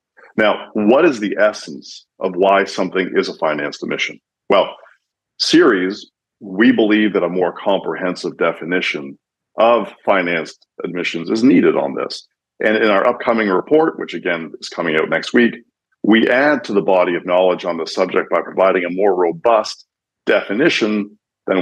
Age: 50-69